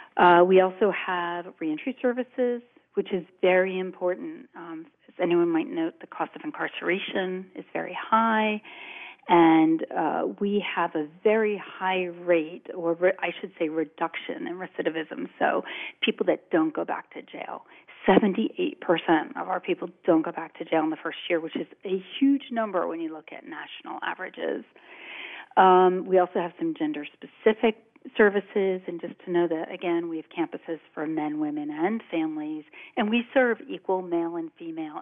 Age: 40-59